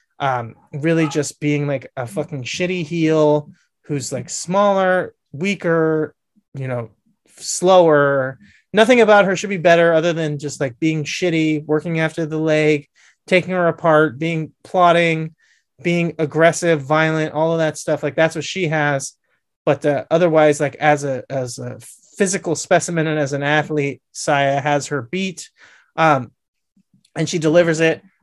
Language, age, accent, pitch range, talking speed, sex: English, 30-49, American, 145-170 Hz, 155 wpm, male